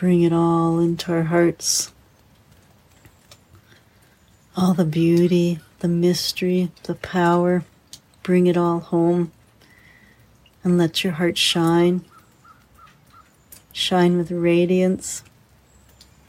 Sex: female